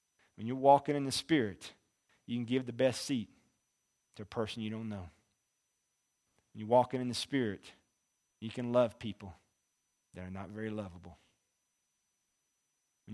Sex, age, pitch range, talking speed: male, 40-59, 100-120 Hz, 155 wpm